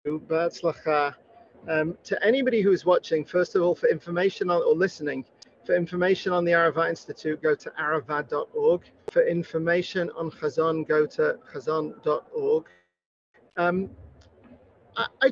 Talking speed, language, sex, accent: 130 wpm, English, male, British